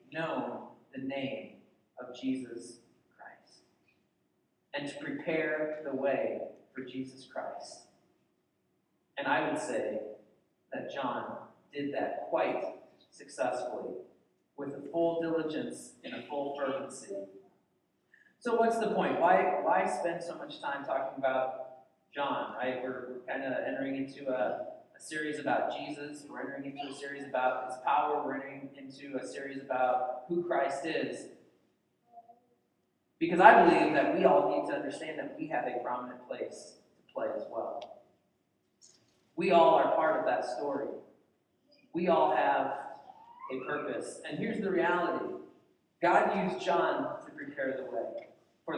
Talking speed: 145 wpm